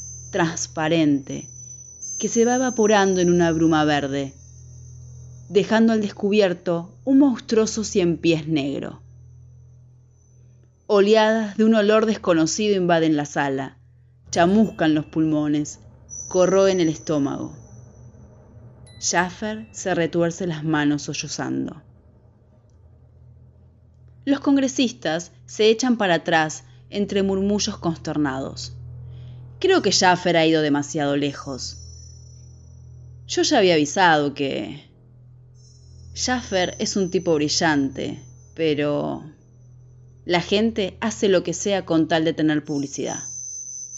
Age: 20-39